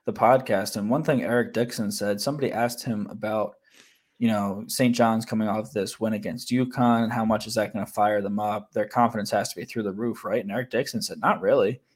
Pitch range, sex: 105-120 Hz, male